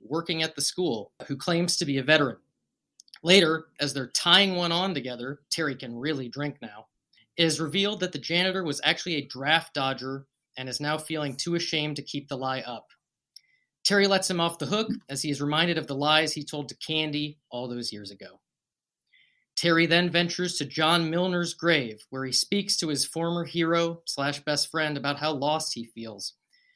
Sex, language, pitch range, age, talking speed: male, English, 140-175 Hz, 30-49, 195 wpm